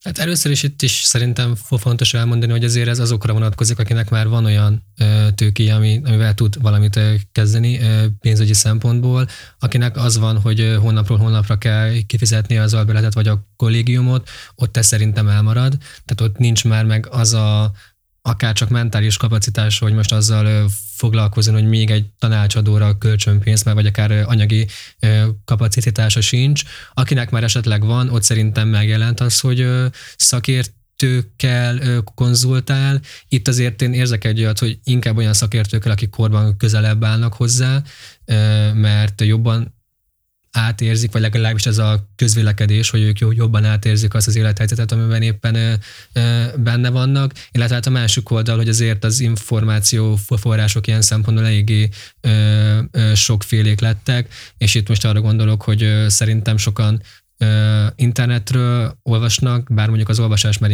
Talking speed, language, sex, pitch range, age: 140 wpm, Hungarian, male, 110-120 Hz, 20-39